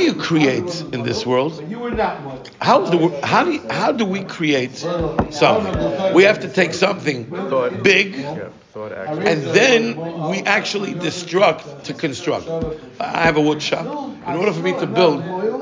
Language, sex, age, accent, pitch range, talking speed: English, male, 50-69, American, 160-210 Hz, 155 wpm